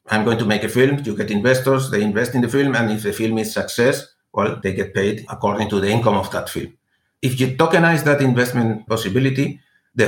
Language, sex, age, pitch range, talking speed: English, male, 50-69, 115-140 Hz, 225 wpm